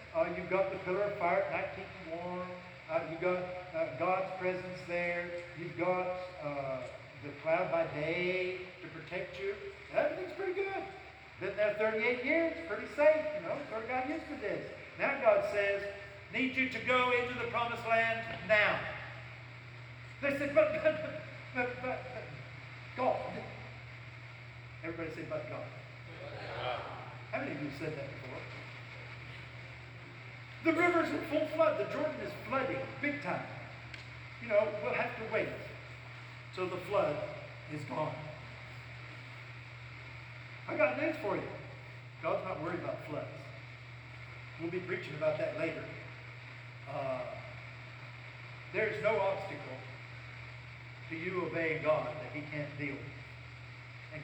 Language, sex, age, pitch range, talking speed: English, male, 60-79, 125-195 Hz, 140 wpm